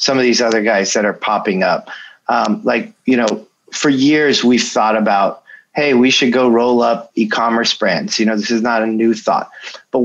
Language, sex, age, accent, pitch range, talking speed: English, male, 30-49, American, 115-135 Hz, 210 wpm